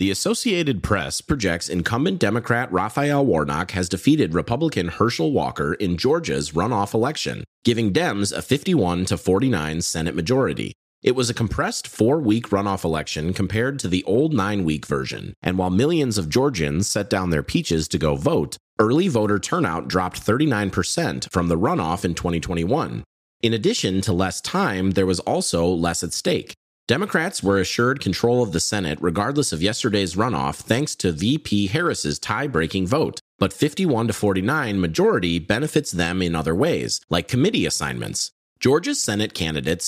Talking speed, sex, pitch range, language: 155 wpm, male, 85-115 Hz, English